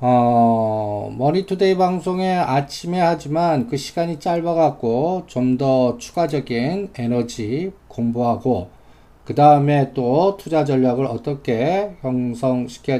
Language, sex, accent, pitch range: Korean, male, native, 125-175 Hz